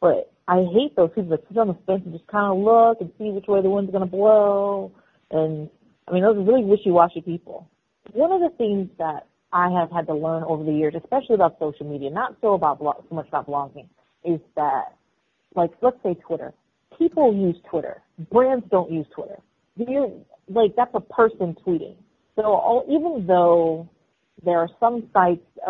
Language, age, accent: English, 30-49, American